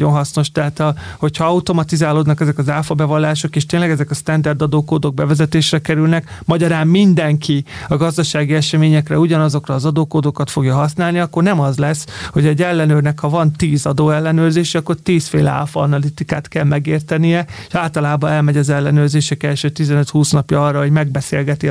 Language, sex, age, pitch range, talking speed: Hungarian, male, 30-49, 145-165 Hz, 145 wpm